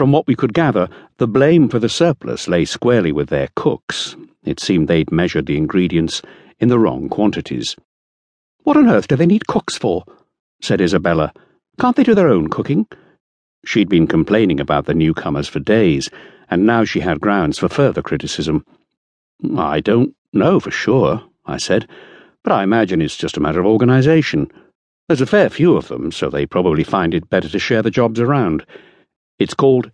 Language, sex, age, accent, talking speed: English, male, 60-79, British, 185 wpm